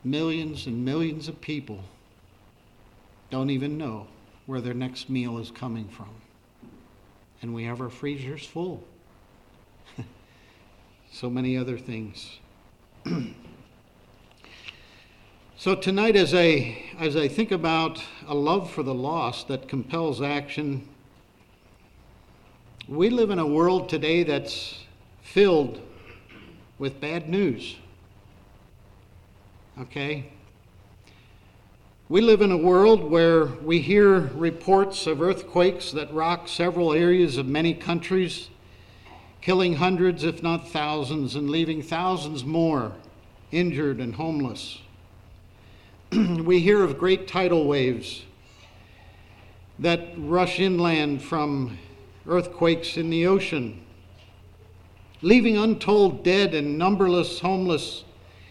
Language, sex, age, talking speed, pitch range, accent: English, male, 60-79, 105 wpm, 100-170 Hz, American